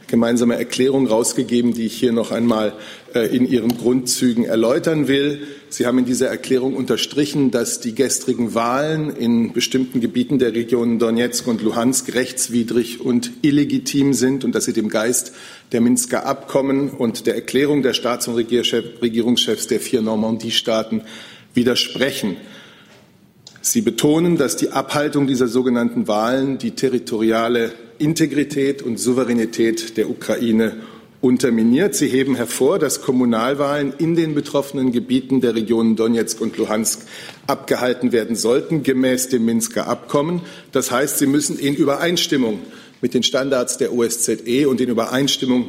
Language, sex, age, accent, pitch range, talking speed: German, male, 50-69, German, 115-135 Hz, 140 wpm